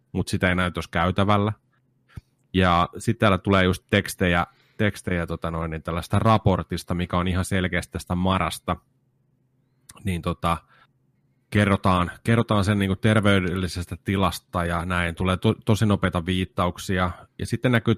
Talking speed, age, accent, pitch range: 130 wpm, 30-49, native, 90-120 Hz